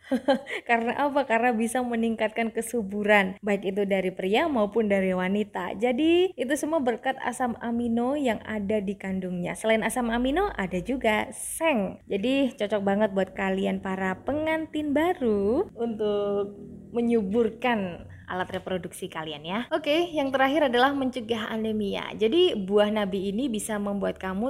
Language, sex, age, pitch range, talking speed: Indonesian, female, 20-39, 205-265 Hz, 135 wpm